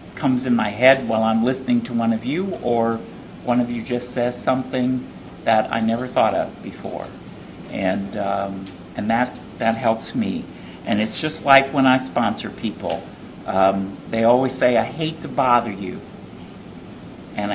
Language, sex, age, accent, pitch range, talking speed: English, male, 50-69, American, 110-140 Hz, 170 wpm